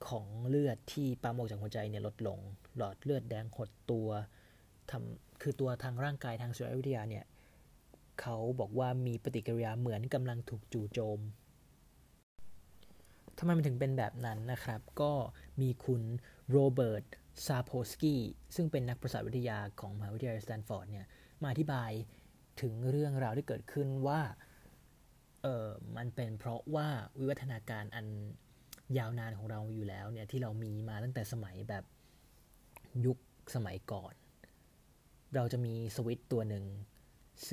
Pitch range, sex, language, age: 110-135 Hz, male, Thai, 20-39